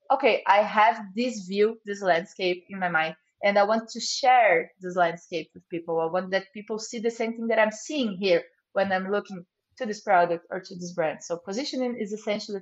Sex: female